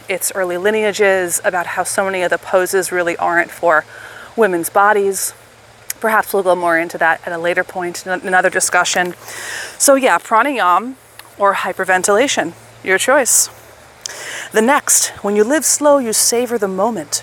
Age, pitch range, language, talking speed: 30-49, 180-215 Hz, English, 155 wpm